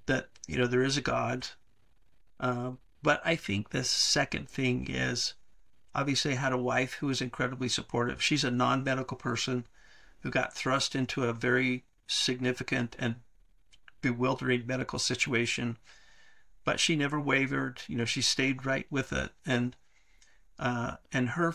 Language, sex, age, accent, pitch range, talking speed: English, male, 50-69, American, 120-135 Hz, 150 wpm